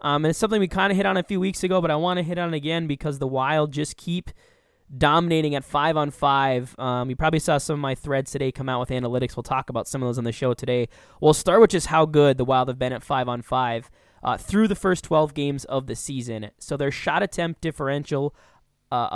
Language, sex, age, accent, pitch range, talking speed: English, male, 10-29, American, 125-155 Hz, 260 wpm